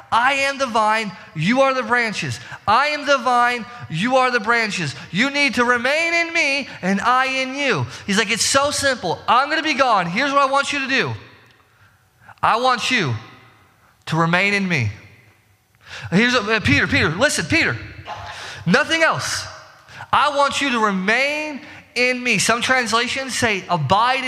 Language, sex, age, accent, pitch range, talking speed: English, male, 20-39, American, 180-265 Hz, 170 wpm